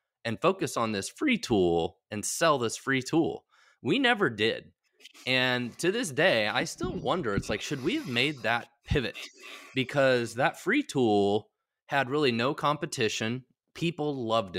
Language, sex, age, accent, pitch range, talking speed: English, male, 20-39, American, 105-140 Hz, 160 wpm